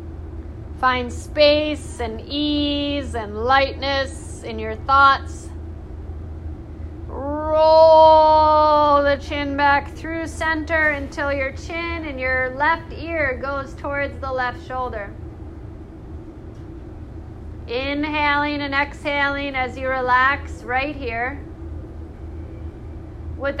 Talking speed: 90 wpm